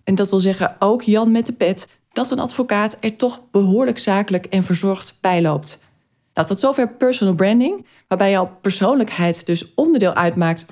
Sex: female